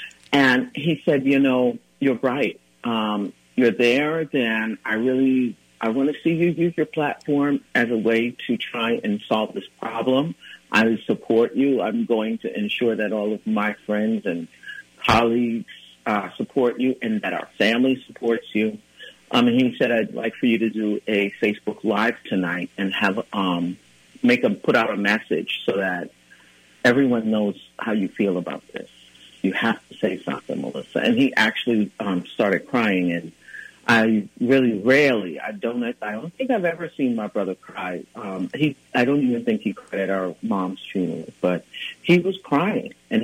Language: English